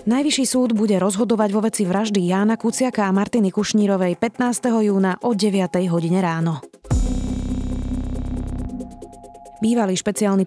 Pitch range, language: 180-225 Hz, Slovak